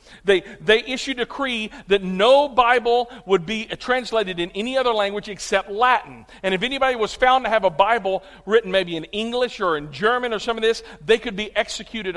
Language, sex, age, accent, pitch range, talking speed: English, male, 50-69, American, 200-250 Hz, 200 wpm